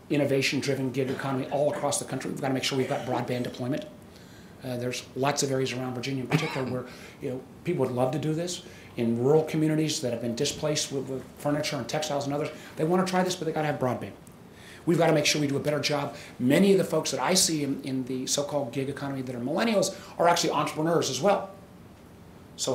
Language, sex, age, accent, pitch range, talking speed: English, male, 40-59, American, 130-165 Hz, 240 wpm